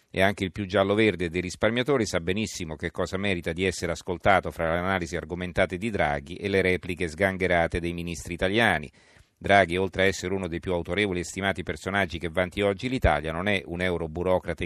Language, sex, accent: Italian, male, native